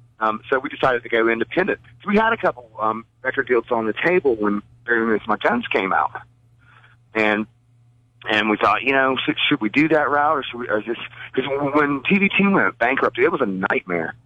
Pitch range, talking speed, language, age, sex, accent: 110-145 Hz, 200 wpm, English, 40-59, male, American